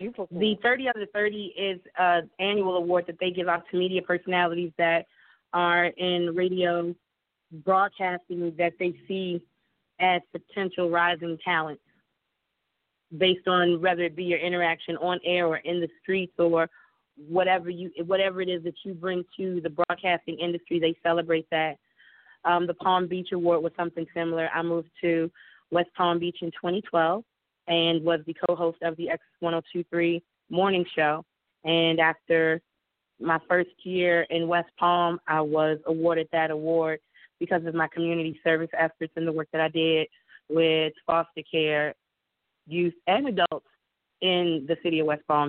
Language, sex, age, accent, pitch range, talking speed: English, female, 20-39, American, 165-180 Hz, 155 wpm